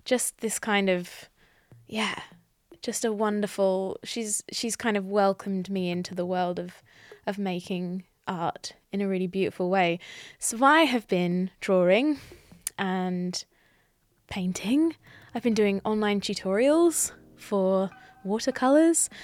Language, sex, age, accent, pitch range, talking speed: English, female, 20-39, British, 185-220 Hz, 125 wpm